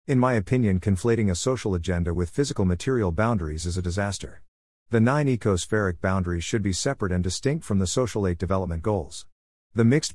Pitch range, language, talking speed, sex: 90-115 Hz, English, 185 wpm, male